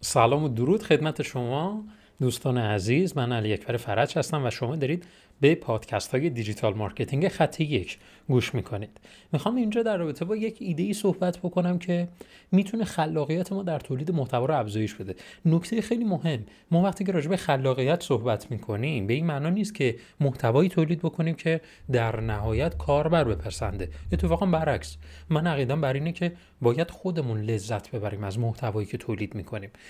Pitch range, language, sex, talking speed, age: 120-175 Hz, Persian, male, 165 wpm, 30-49